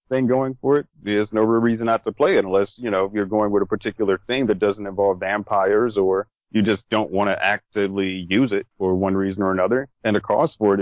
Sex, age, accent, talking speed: male, 40-59, American, 245 wpm